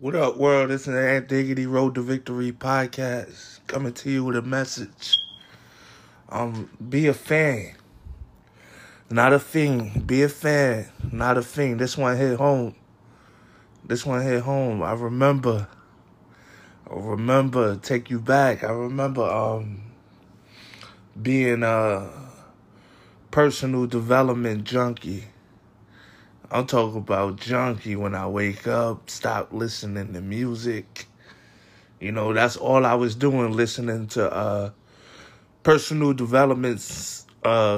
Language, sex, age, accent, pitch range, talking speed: English, male, 20-39, American, 105-130 Hz, 125 wpm